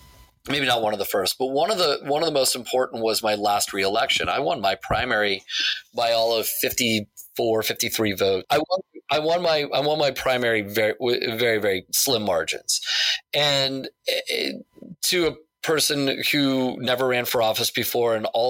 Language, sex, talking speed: English, male, 180 wpm